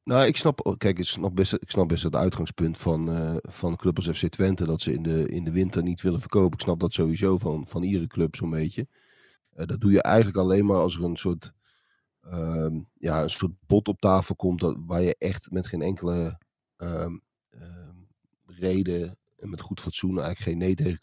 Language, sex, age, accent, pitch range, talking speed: Dutch, male, 40-59, Dutch, 85-100 Hz, 205 wpm